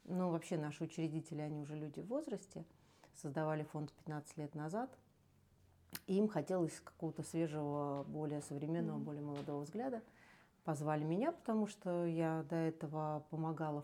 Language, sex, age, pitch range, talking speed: Russian, female, 40-59, 155-210 Hz, 135 wpm